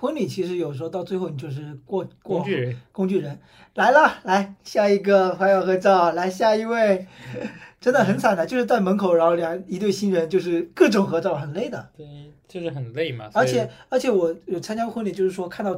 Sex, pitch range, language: male, 145-195 Hz, Chinese